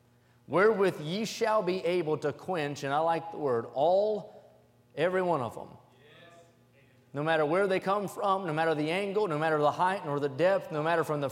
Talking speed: 200 wpm